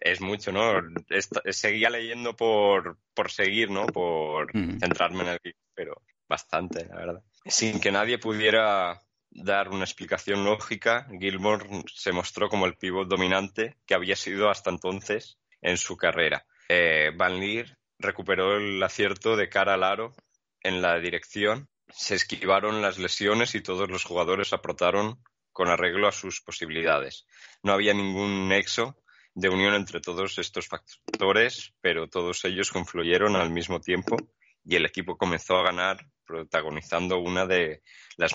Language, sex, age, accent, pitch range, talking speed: Spanish, male, 20-39, Spanish, 90-105 Hz, 145 wpm